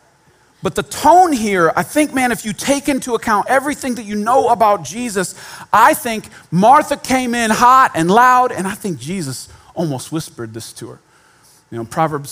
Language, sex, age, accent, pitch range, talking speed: English, male, 40-59, American, 135-210 Hz, 185 wpm